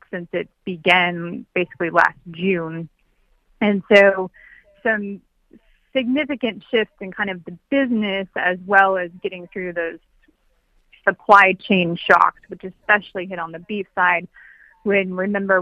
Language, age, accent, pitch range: English, 30-49, American, 180-205 Hz